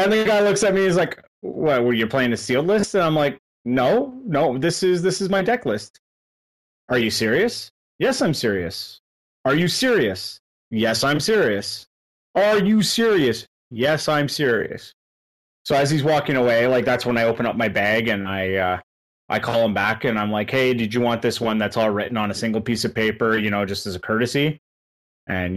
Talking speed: 210 wpm